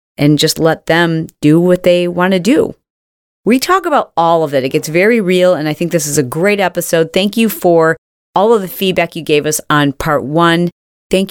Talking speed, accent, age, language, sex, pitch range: 225 wpm, American, 40-59, English, female, 155-215 Hz